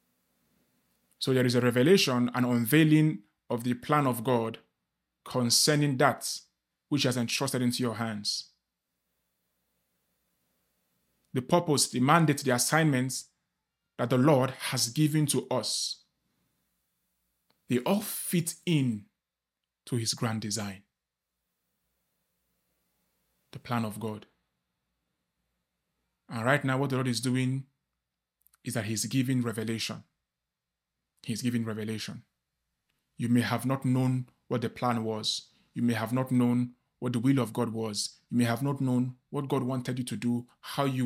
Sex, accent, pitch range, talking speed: male, Nigerian, 110-130 Hz, 135 wpm